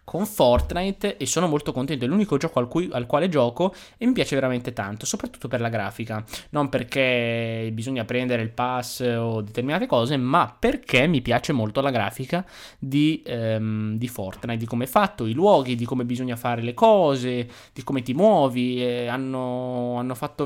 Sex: male